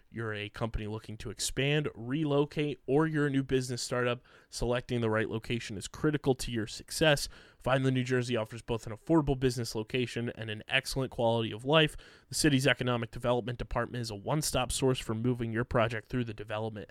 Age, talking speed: 20-39, 190 wpm